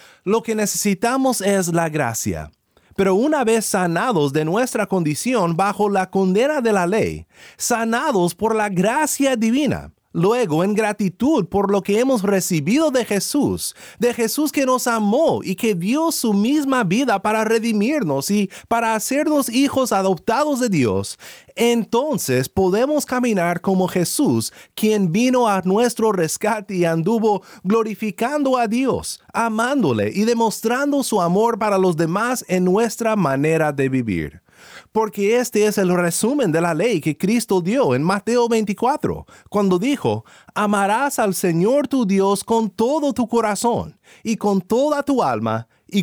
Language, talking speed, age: Spanish, 145 wpm, 30-49